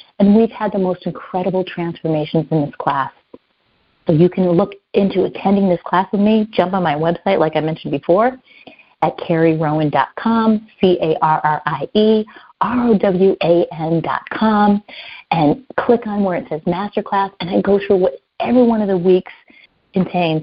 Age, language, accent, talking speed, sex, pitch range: 30-49, English, American, 145 wpm, female, 170-220 Hz